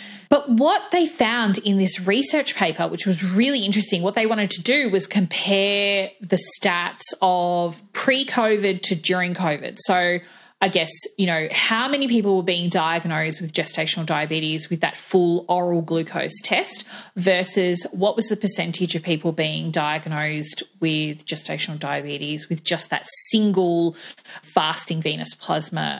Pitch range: 170-220 Hz